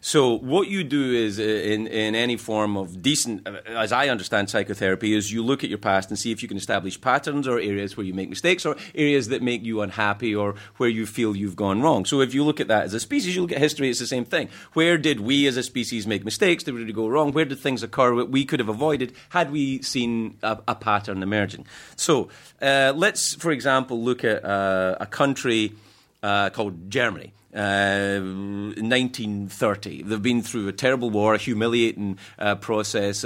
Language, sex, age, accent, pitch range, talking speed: English, male, 30-49, British, 105-125 Hz, 215 wpm